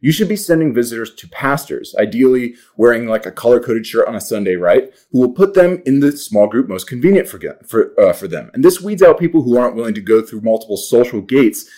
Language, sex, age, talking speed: English, male, 30-49, 235 wpm